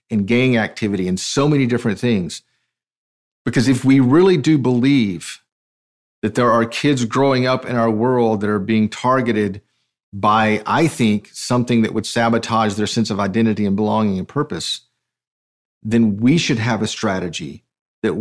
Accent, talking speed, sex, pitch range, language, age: American, 160 wpm, male, 110-145 Hz, English, 40-59